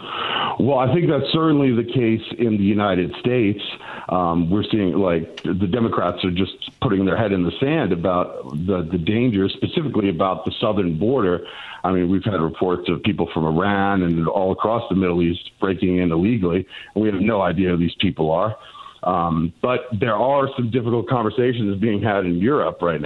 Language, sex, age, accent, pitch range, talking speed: English, male, 50-69, American, 90-110 Hz, 190 wpm